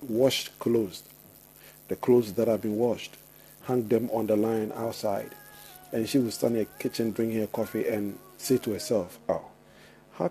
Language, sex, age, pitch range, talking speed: English, male, 50-69, 105-125 Hz, 175 wpm